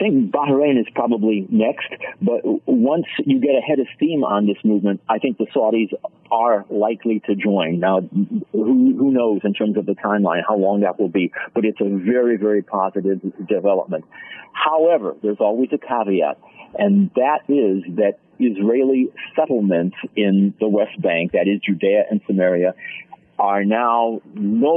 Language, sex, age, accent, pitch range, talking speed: English, male, 50-69, American, 105-165 Hz, 165 wpm